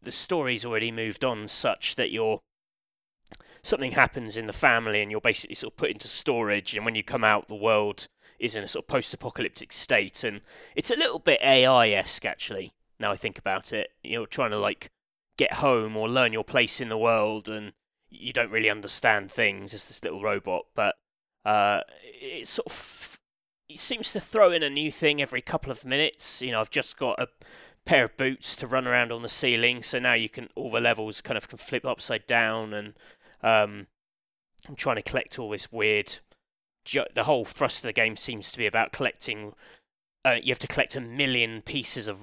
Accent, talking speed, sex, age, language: British, 205 wpm, male, 20-39, English